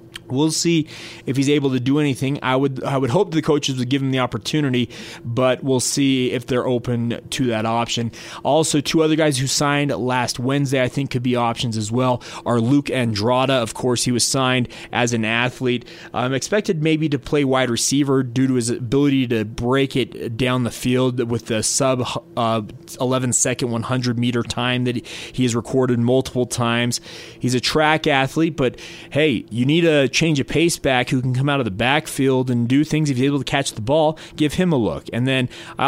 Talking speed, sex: 205 wpm, male